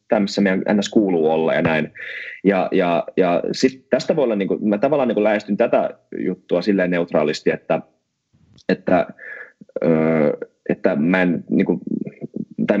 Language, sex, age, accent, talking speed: Finnish, male, 20-39, native, 145 wpm